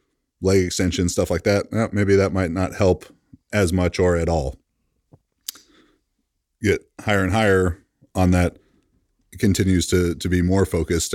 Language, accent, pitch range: English, American, 85-100 Hz